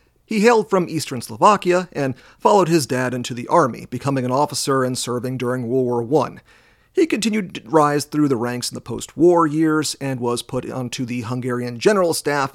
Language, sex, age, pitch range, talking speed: English, male, 40-59, 125-160 Hz, 190 wpm